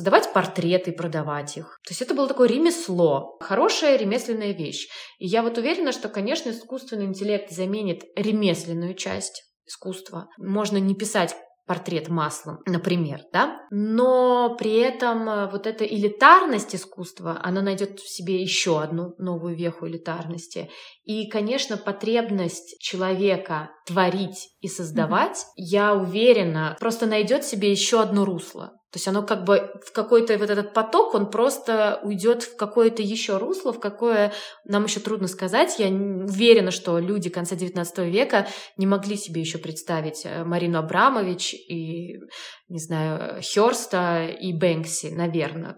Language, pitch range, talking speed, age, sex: Russian, 175-215 Hz, 140 wpm, 20-39, female